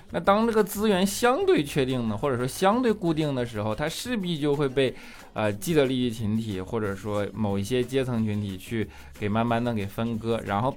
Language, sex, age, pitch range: Chinese, male, 20-39, 105-135 Hz